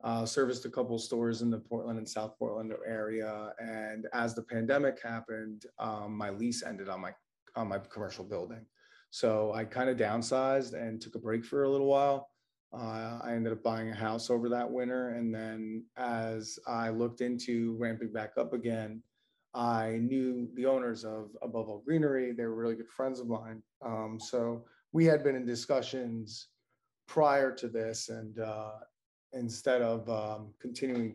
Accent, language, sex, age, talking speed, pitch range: American, English, male, 30-49, 175 wpm, 110-125 Hz